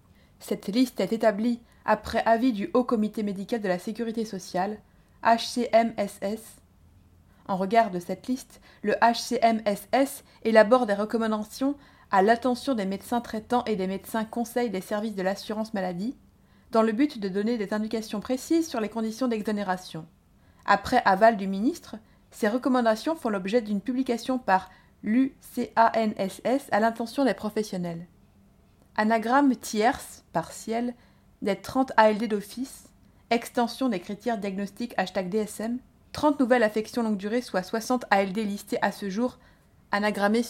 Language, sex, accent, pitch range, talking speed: French, female, French, 195-240 Hz, 140 wpm